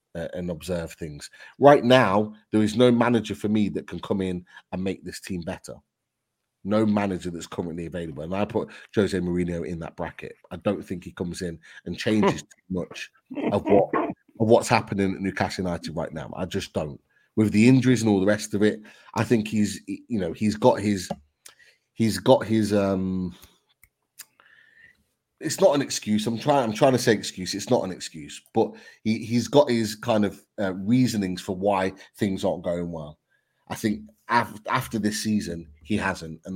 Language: English